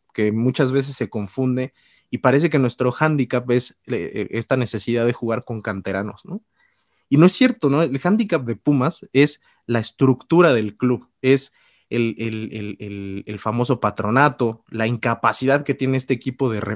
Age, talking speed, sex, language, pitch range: 30-49, 160 wpm, male, Spanish, 120-150 Hz